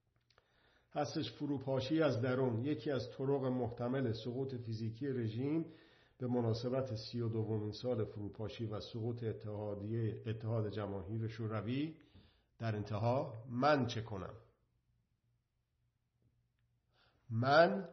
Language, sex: Persian, male